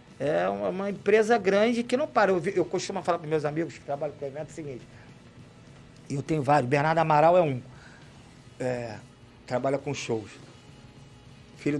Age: 50-69